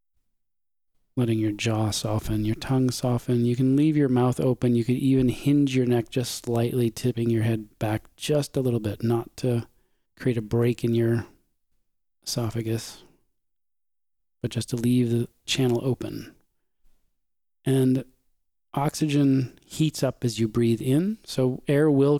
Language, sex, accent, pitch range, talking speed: English, male, American, 115-130 Hz, 150 wpm